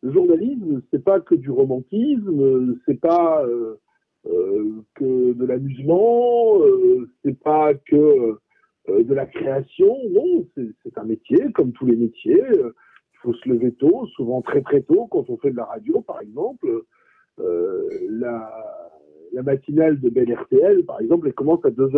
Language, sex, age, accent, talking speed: French, male, 50-69, French, 160 wpm